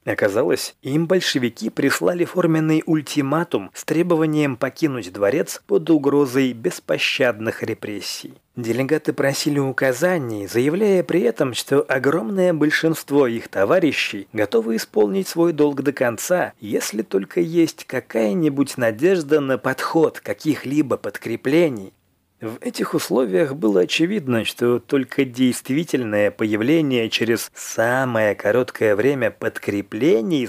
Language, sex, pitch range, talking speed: Russian, male, 120-165 Hz, 105 wpm